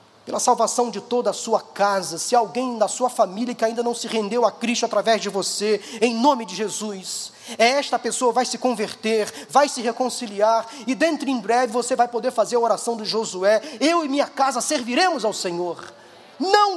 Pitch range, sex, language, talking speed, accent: 215-275 Hz, male, Portuguese, 195 wpm, Brazilian